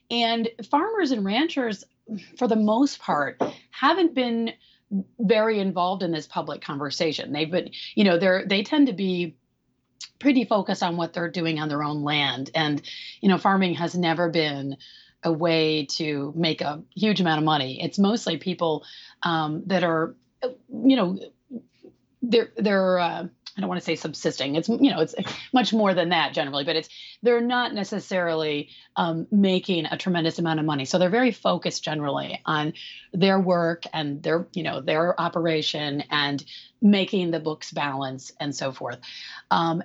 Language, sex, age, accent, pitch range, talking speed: English, female, 30-49, American, 155-215 Hz, 170 wpm